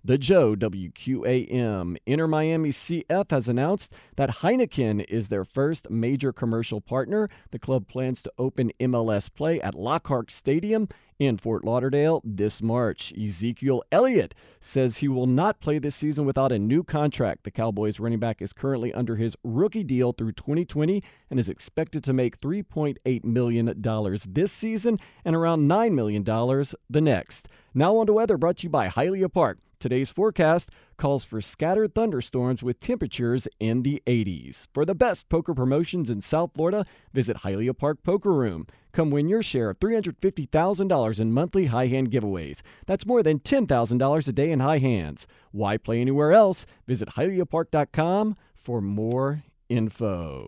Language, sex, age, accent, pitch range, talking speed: English, male, 40-59, American, 115-165 Hz, 160 wpm